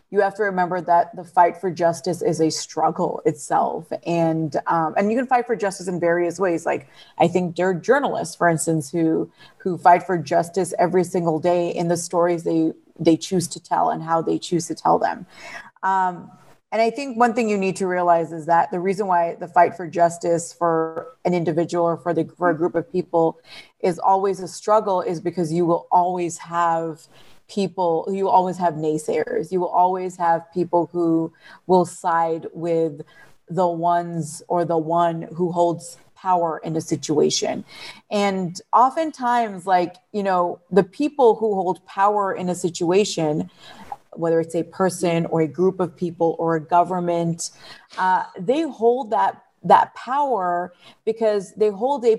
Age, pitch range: 30-49, 165-190 Hz